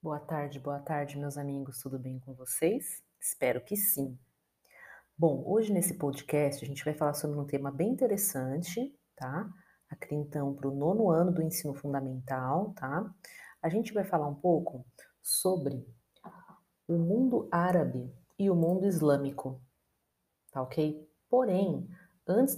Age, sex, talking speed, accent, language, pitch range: 40-59, female, 145 wpm, Brazilian, Portuguese, 145-185 Hz